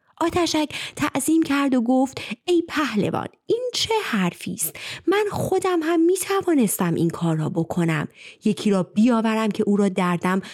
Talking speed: 155 wpm